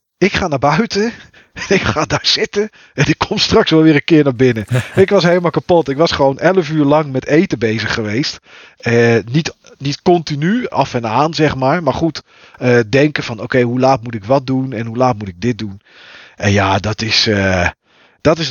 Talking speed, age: 225 wpm, 40-59